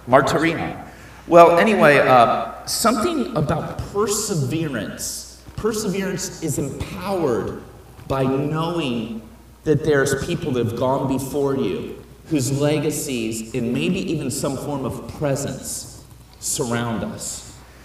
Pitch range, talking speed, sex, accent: 130-185 Hz, 105 wpm, male, American